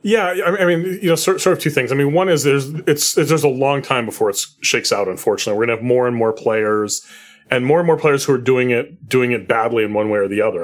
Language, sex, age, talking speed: English, male, 30-49, 290 wpm